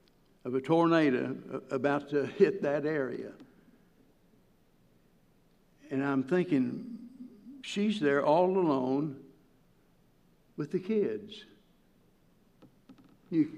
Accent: American